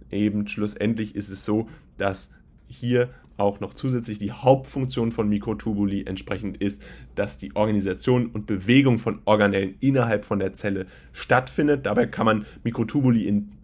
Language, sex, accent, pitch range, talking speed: German, male, German, 100-130 Hz, 145 wpm